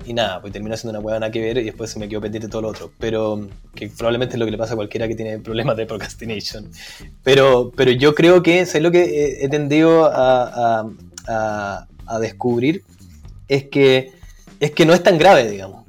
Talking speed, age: 215 wpm, 20-39